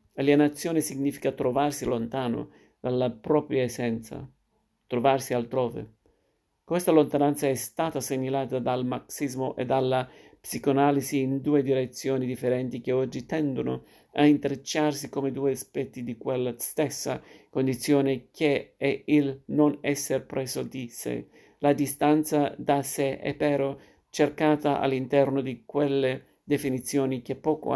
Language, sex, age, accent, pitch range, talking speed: Italian, male, 50-69, native, 130-145 Hz, 120 wpm